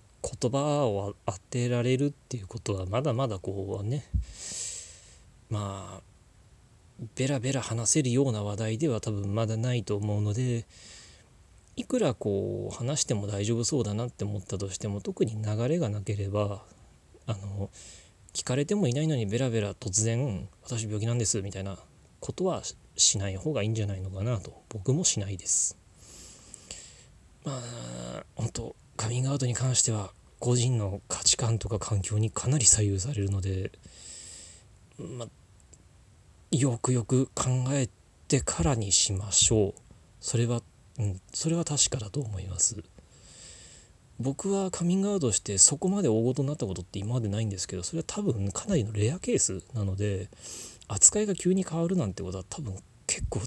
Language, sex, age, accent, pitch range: Japanese, male, 20-39, native, 95-125 Hz